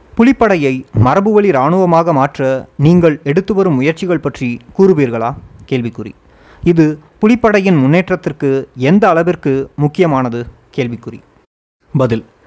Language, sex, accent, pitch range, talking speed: Tamil, male, native, 135-185 Hz, 90 wpm